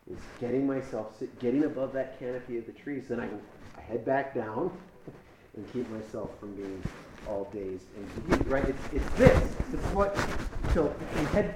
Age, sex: 30-49, male